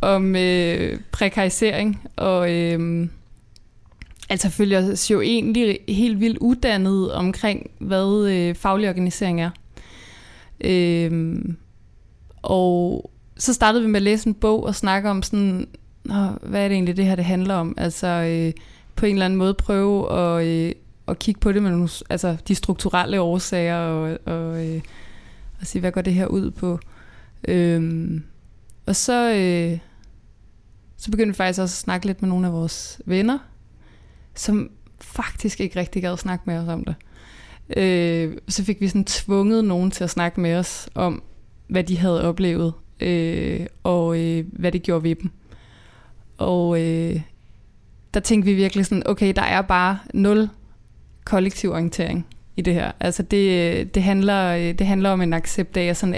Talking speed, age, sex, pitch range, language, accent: 165 wpm, 20-39, female, 170-200 Hz, Danish, native